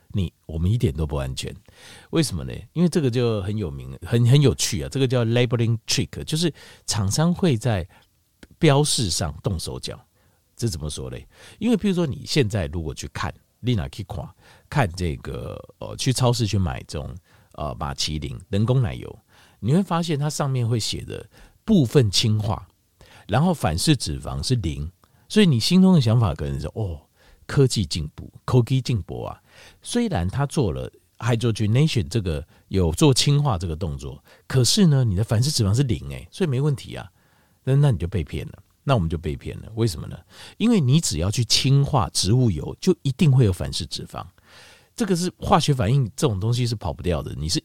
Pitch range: 85-140 Hz